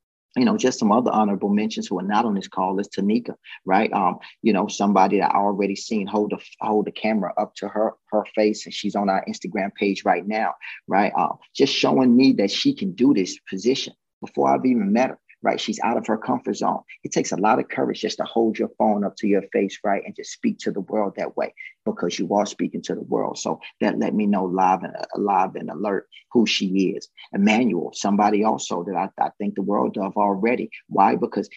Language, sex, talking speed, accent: English, male, 230 wpm, American